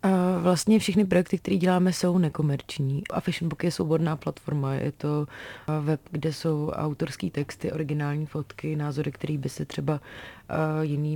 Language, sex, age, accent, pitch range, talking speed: Czech, female, 30-49, native, 150-170 Hz, 150 wpm